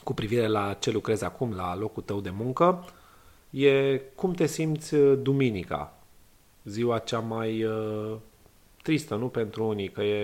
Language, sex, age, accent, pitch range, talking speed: Romanian, male, 30-49, native, 105-135 Hz, 145 wpm